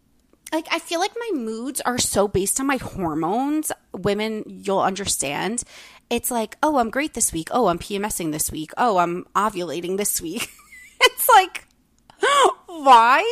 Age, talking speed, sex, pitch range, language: 30-49, 160 wpm, female, 180-245 Hz, English